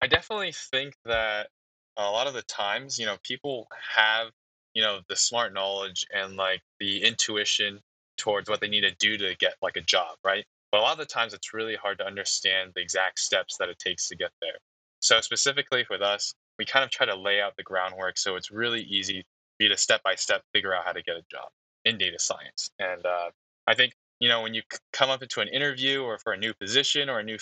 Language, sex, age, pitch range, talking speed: English, male, 10-29, 95-125 Hz, 230 wpm